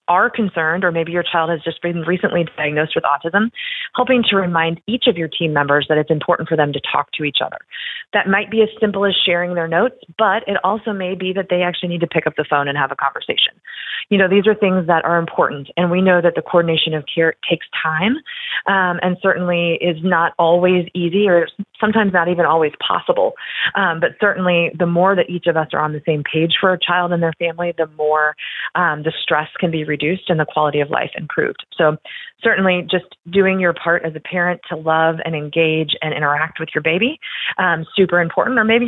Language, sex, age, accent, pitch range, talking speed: English, female, 30-49, American, 160-190 Hz, 225 wpm